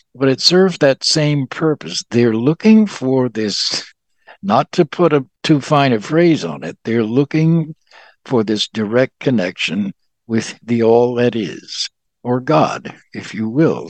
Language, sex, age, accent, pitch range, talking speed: English, male, 60-79, American, 120-155 Hz, 155 wpm